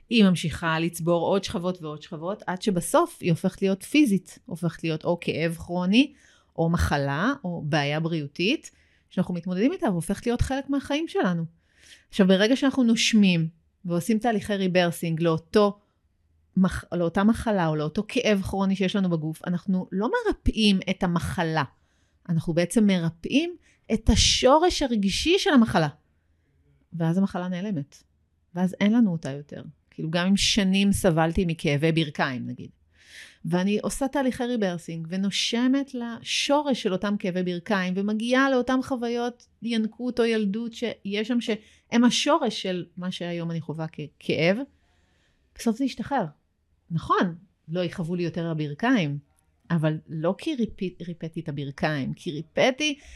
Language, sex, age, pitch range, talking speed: Hebrew, female, 30-49, 165-230 Hz, 135 wpm